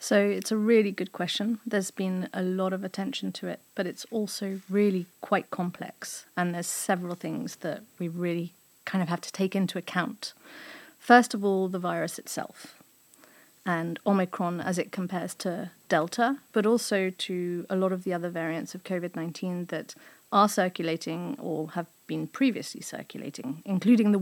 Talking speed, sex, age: 170 wpm, female, 40-59